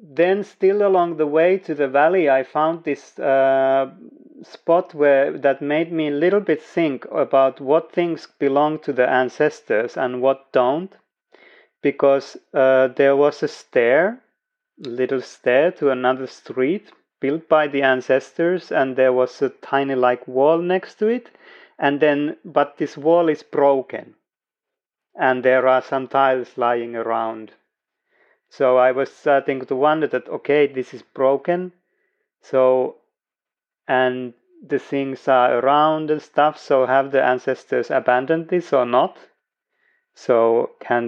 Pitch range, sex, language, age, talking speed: 130-160 Hz, male, Finnish, 30-49, 145 wpm